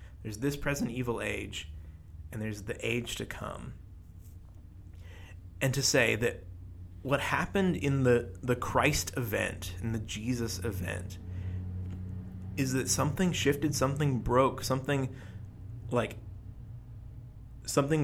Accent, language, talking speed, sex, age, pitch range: American, English, 115 wpm, male, 30-49, 95-130 Hz